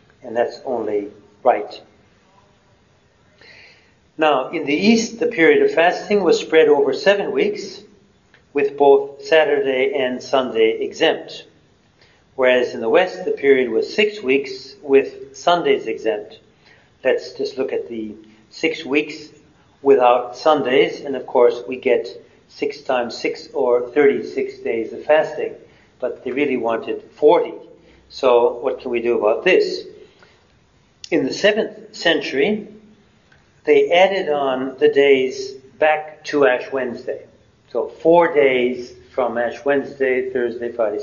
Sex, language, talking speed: male, English, 130 wpm